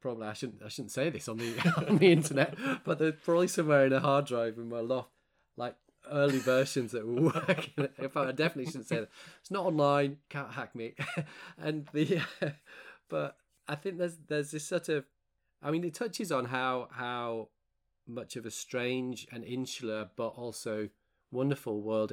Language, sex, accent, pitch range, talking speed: English, male, British, 110-140 Hz, 185 wpm